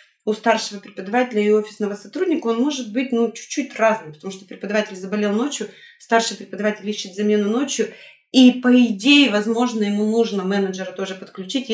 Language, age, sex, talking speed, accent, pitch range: Russian, 20-39, female, 160 wpm, native, 210-250 Hz